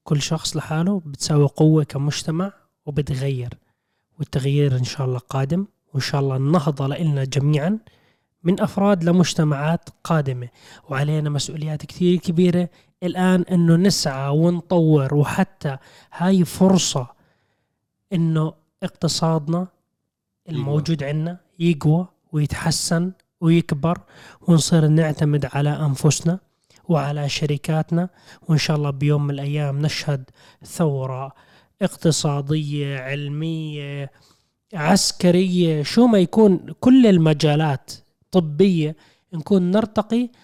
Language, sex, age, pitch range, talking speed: Arabic, male, 20-39, 145-180 Hz, 95 wpm